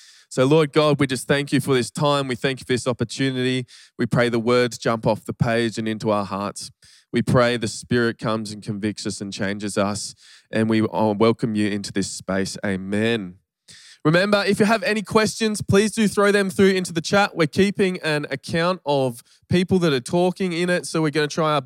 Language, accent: English, Australian